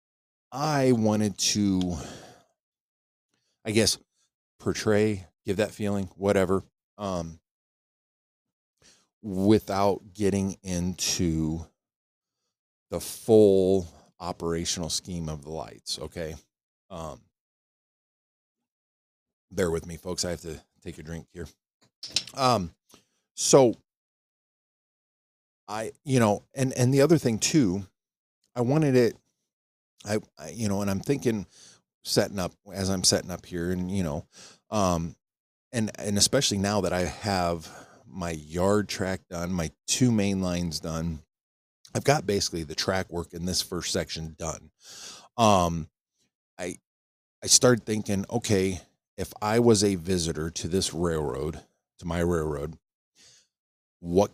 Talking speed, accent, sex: 125 wpm, American, male